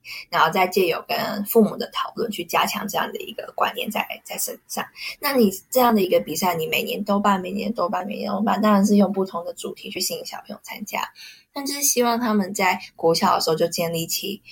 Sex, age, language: female, 20-39, Chinese